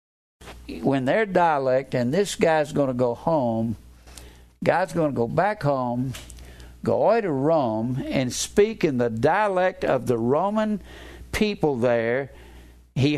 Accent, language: American, English